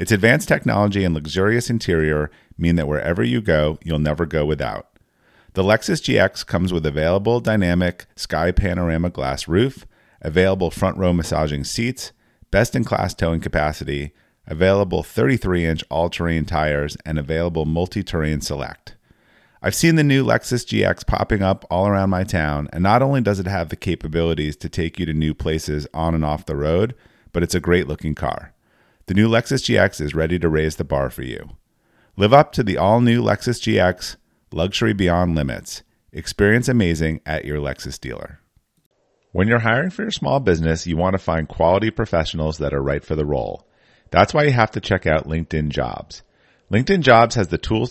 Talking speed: 180 wpm